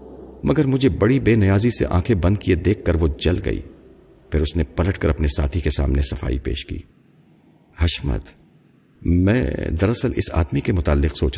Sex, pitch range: male, 75-100 Hz